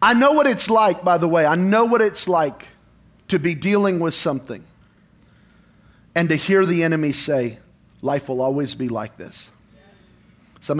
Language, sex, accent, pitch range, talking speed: English, male, American, 130-185 Hz, 170 wpm